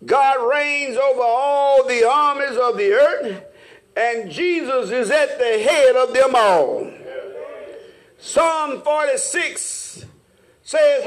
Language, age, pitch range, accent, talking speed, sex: English, 50-69, 285-400 Hz, American, 115 wpm, male